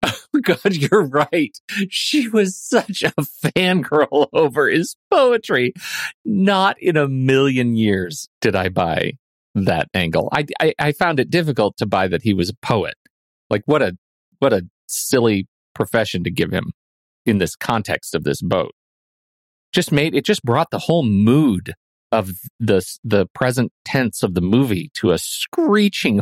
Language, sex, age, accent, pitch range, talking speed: English, male, 40-59, American, 105-160 Hz, 160 wpm